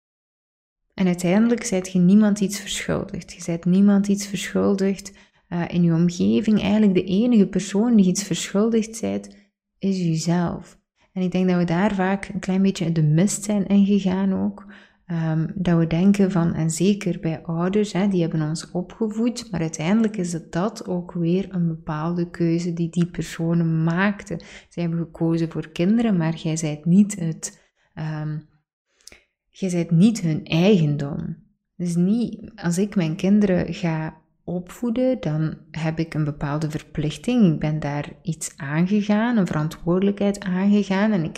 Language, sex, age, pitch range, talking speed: Dutch, female, 20-39, 165-200 Hz, 160 wpm